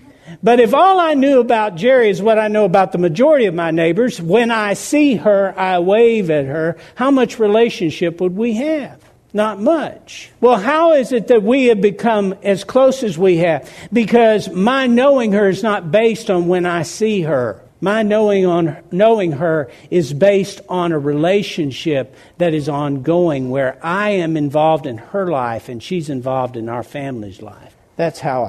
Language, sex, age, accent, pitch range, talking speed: English, male, 60-79, American, 160-220 Hz, 180 wpm